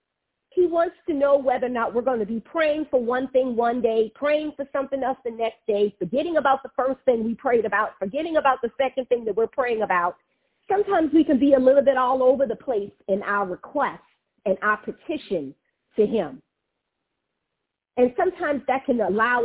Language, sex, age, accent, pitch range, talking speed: English, female, 40-59, American, 220-285 Hz, 200 wpm